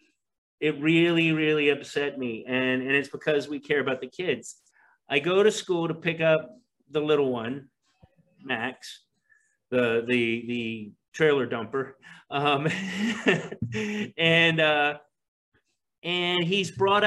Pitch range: 120-170 Hz